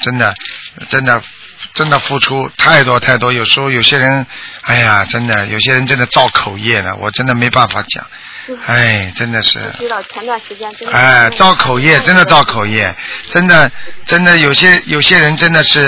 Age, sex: 50-69, male